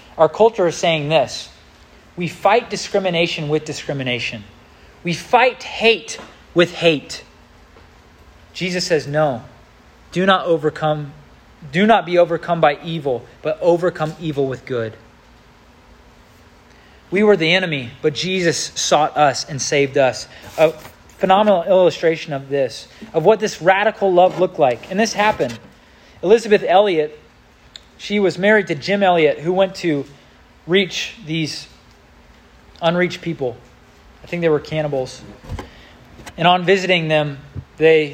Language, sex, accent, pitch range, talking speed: English, male, American, 130-180 Hz, 130 wpm